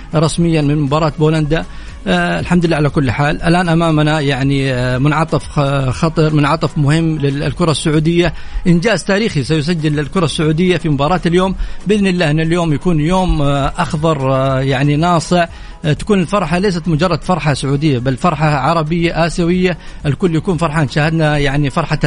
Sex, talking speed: male, 140 wpm